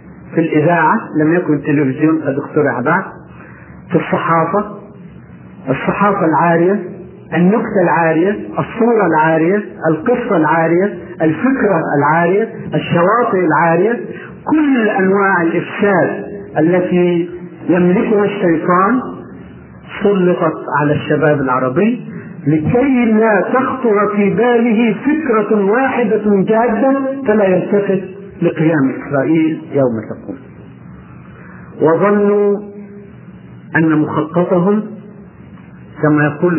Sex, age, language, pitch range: male, 50-69, Arabic, 150-200 Hz